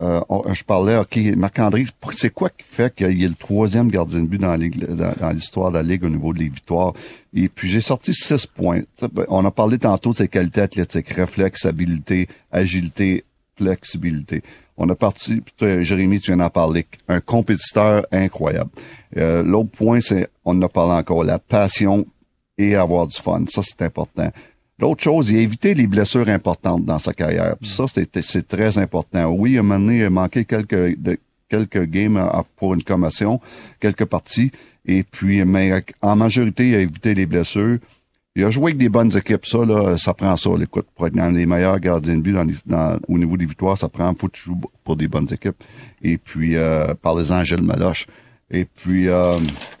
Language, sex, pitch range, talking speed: French, male, 85-110 Hz, 200 wpm